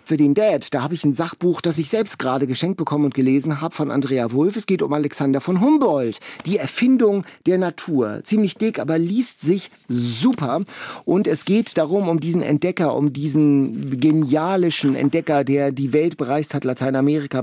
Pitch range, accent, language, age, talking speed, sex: 140-180 Hz, German, German, 40-59, 185 wpm, male